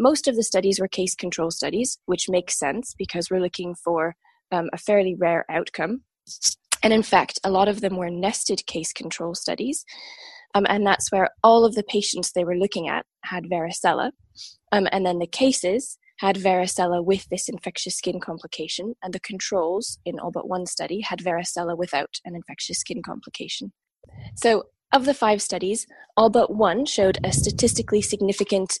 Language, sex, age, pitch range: English, female, 20-39, 180-220 Hz